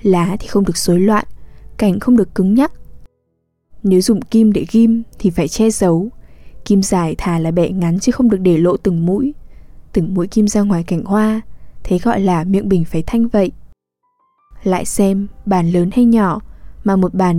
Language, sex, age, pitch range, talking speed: English, female, 10-29, 180-225 Hz, 195 wpm